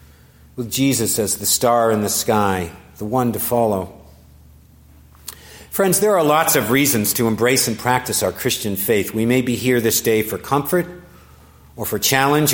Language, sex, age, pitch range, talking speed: English, male, 50-69, 75-125 Hz, 170 wpm